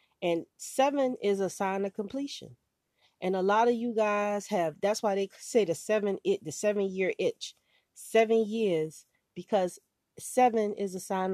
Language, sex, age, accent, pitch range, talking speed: English, female, 30-49, American, 155-195 Hz, 170 wpm